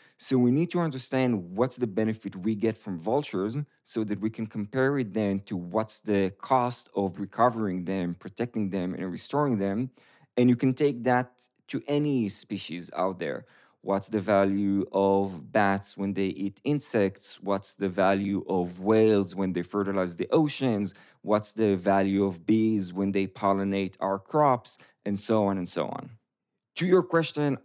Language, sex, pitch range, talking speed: English, male, 95-120 Hz, 170 wpm